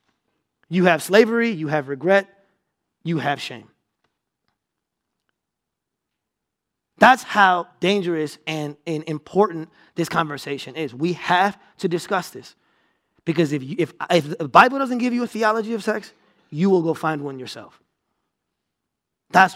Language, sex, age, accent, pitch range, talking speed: English, male, 20-39, American, 160-215 Hz, 135 wpm